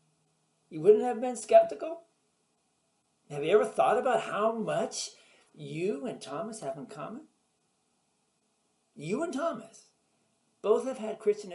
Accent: American